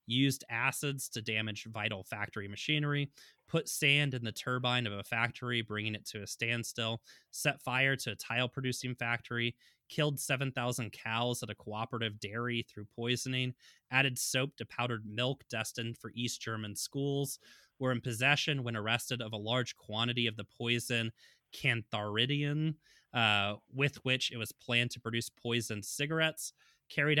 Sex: male